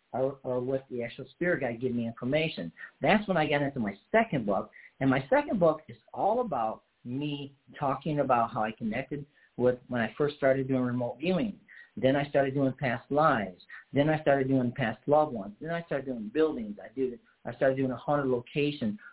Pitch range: 120-155 Hz